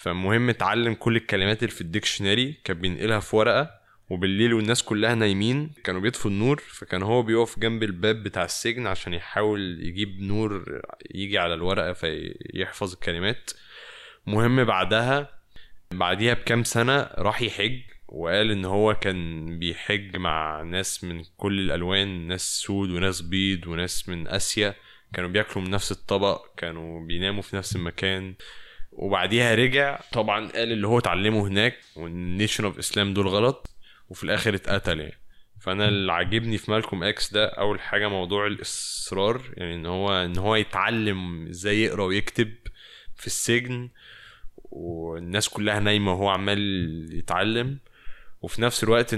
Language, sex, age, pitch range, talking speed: Arabic, male, 20-39, 90-110 Hz, 145 wpm